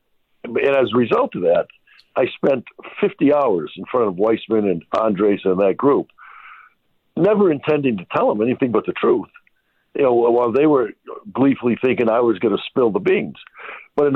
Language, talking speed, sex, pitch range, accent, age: English, 185 wpm, male, 120-190 Hz, American, 60-79